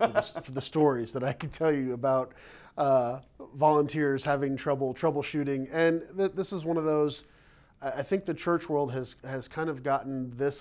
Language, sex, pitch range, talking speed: English, male, 120-145 Hz, 180 wpm